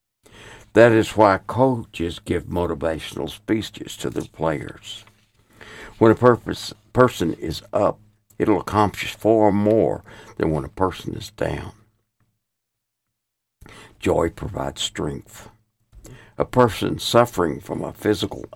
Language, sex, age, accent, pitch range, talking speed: English, male, 60-79, American, 100-115 Hz, 115 wpm